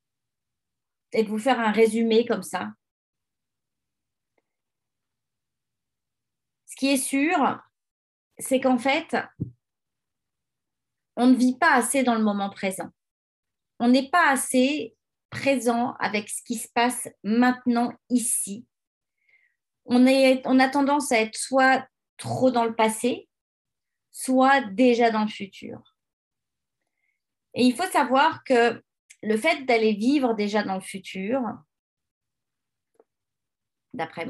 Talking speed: 115 wpm